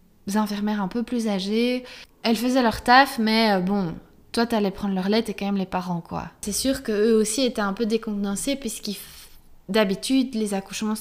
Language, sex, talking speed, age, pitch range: English, female, 190 wpm, 20-39, 190-230 Hz